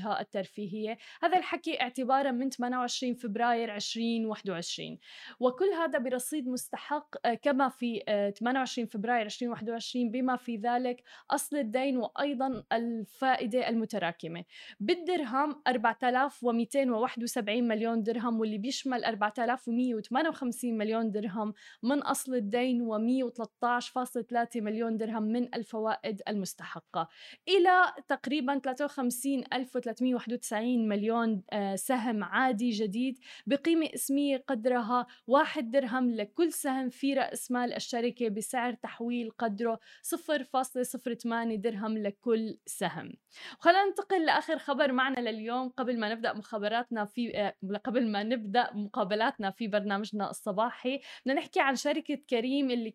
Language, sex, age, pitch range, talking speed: Arabic, female, 20-39, 225-270 Hz, 105 wpm